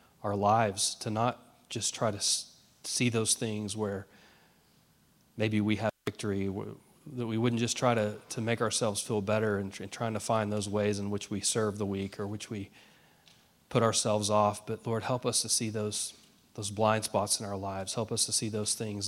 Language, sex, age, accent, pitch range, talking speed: English, male, 30-49, American, 100-115 Hz, 200 wpm